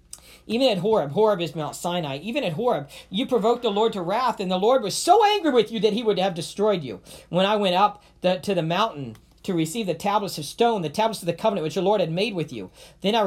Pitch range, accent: 175-225 Hz, American